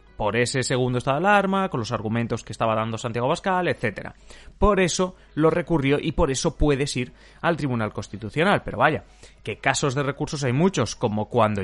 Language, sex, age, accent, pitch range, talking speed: Spanish, male, 30-49, Spanish, 115-185 Hz, 190 wpm